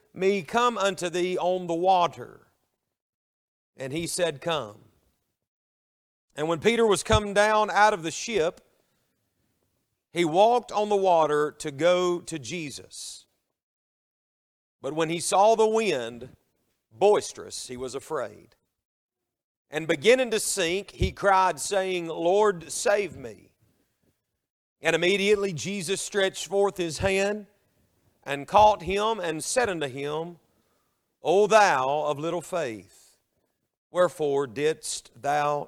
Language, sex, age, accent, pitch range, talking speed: English, male, 40-59, American, 145-200 Hz, 120 wpm